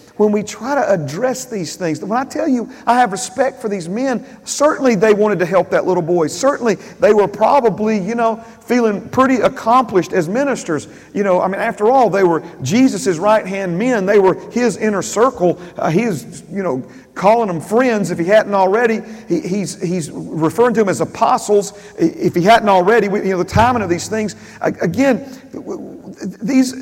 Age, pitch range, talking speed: 40-59, 150-220 Hz, 195 wpm